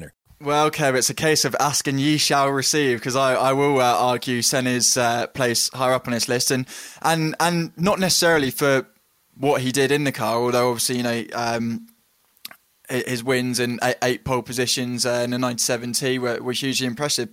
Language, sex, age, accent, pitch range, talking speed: English, male, 10-29, British, 120-140 Hz, 200 wpm